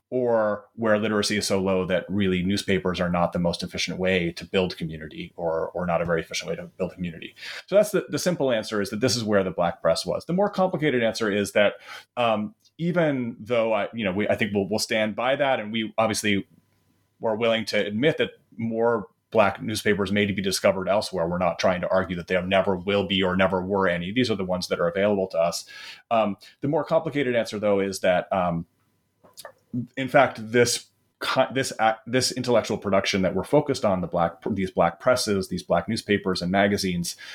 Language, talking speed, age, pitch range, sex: English, 210 wpm, 30-49, 95-115 Hz, male